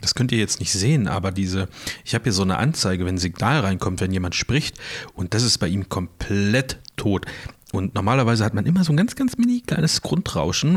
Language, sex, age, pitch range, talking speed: German, male, 40-59, 95-125 Hz, 225 wpm